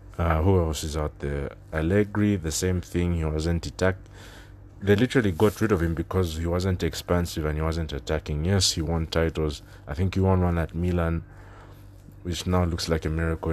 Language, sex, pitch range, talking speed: English, male, 80-100 Hz, 195 wpm